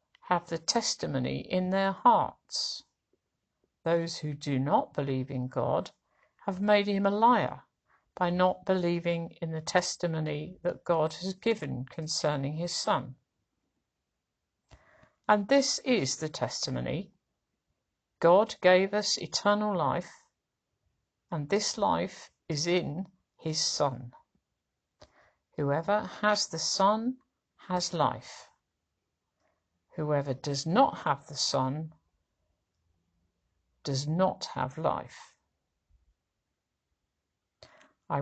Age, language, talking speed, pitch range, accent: 50-69, English, 100 wpm, 130-190 Hz, British